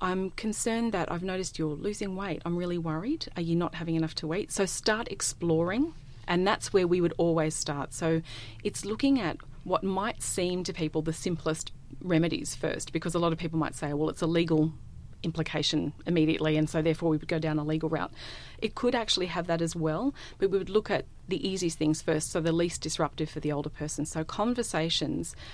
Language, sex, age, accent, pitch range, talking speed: English, female, 30-49, Australian, 155-185 Hz, 210 wpm